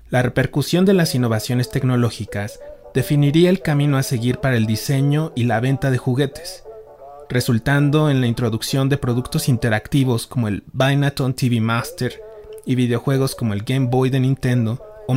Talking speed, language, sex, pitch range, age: 160 wpm, Spanish, male, 115-135 Hz, 30-49